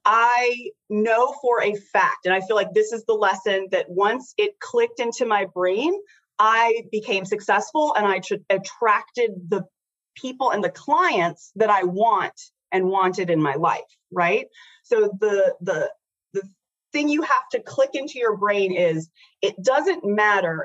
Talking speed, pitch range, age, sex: 165 wpm, 190-315 Hz, 30-49, female